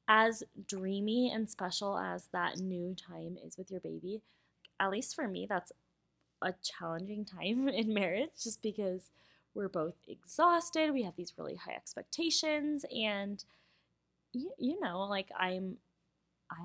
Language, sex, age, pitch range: English, female, 20-39, 180-220 Hz